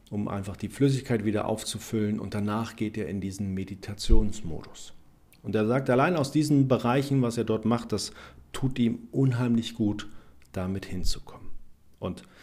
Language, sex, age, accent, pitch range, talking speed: German, male, 40-59, German, 100-115 Hz, 155 wpm